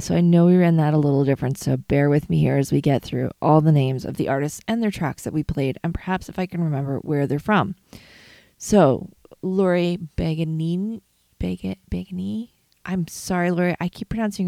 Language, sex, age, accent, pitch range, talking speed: English, female, 20-39, American, 155-190 Hz, 205 wpm